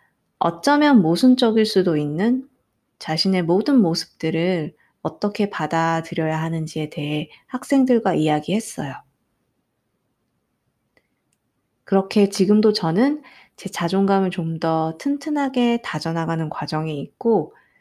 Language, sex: Korean, female